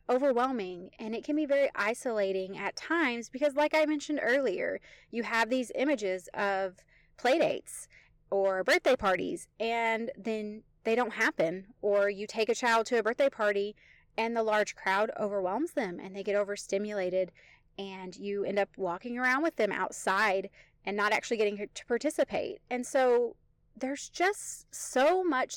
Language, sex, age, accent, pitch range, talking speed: English, female, 30-49, American, 200-280 Hz, 160 wpm